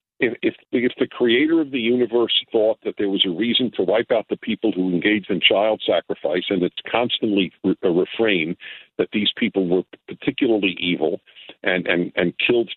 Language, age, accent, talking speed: English, 50-69, American, 180 wpm